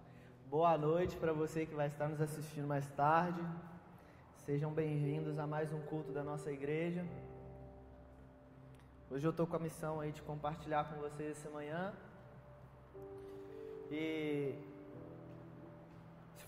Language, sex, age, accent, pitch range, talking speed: Gujarati, male, 20-39, Brazilian, 150-180 Hz, 125 wpm